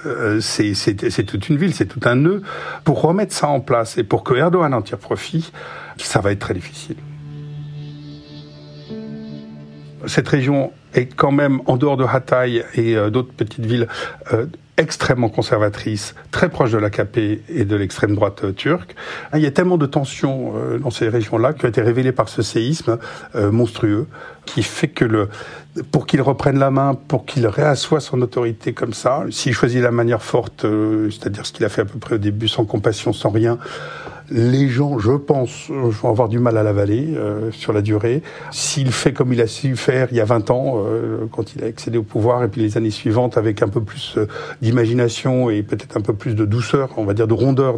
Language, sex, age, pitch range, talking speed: French, male, 60-79, 110-140 Hz, 195 wpm